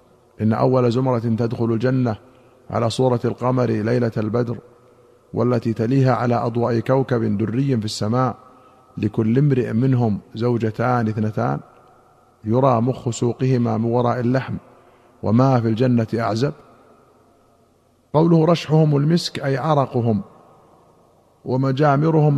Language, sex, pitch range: Arabic, male, 120-140 Hz